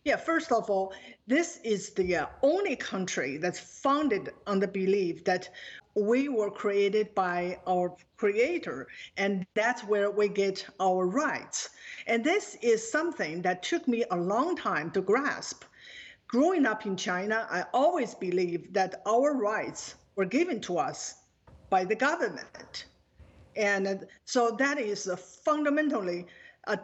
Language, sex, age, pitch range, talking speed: English, female, 50-69, 190-270 Hz, 140 wpm